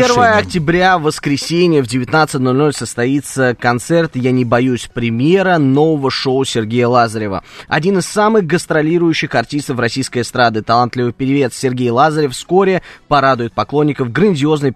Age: 20-39